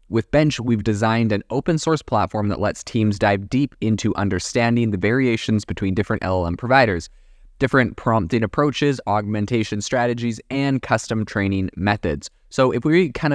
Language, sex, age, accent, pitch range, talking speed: English, male, 20-39, American, 100-120 Hz, 155 wpm